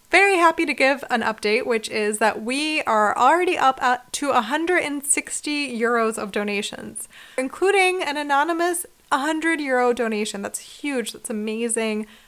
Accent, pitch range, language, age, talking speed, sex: American, 220-295 Hz, English, 20-39, 135 wpm, female